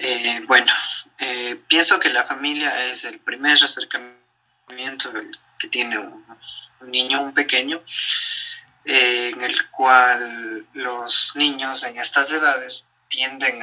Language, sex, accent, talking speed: Spanish, male, Mexican, 120 wpm